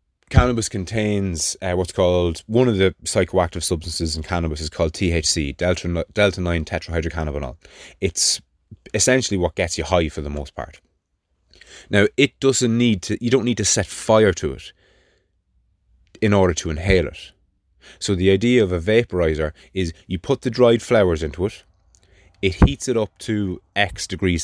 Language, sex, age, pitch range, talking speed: English, male, 20-39, 80-100 Hz, 170 wpm